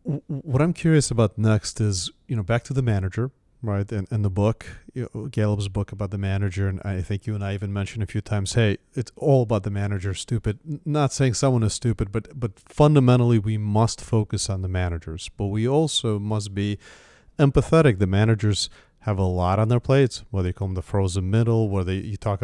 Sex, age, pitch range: male, 40-59, 100-125 Hz